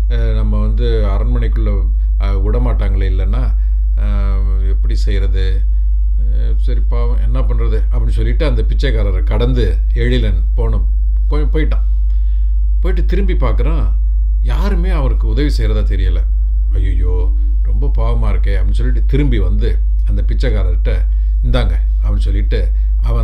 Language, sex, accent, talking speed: Tamil, male, native, 105 wpm